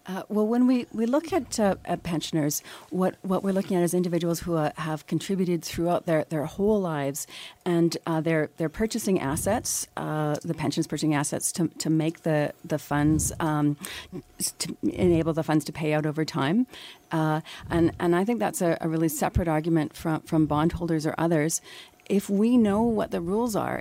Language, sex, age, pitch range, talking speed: English, female, 40-59, 160-195 Hz, 190 wpm